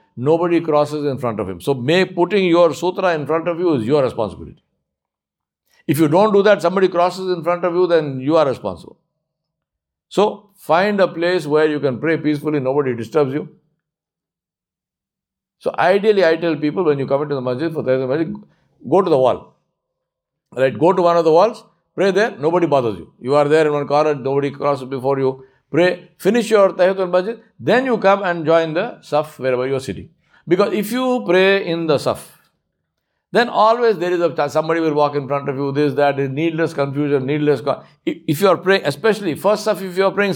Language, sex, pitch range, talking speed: English, male, 140-185 Hz, 200 wpm